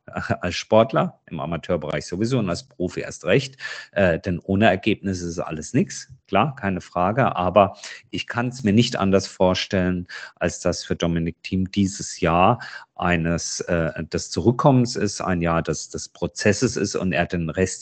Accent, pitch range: German, 90-115 Hz